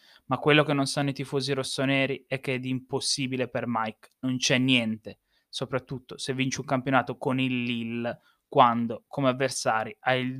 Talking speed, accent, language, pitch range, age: 175 wpm, native, Italian, 130-155 Hz, 20-39